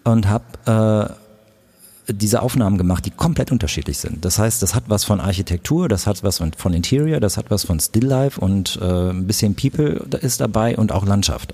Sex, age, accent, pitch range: male, 40-59, German, 95-110 Hz